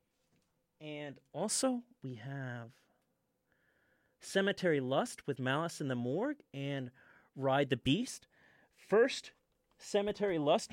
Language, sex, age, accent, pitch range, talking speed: English, male, 30-49, American, 130-195 Hz, 100 wpm